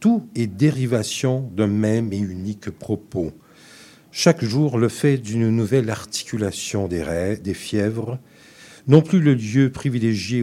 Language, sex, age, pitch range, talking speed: French, male, 60-79, 105-140 Hz, 140 wpm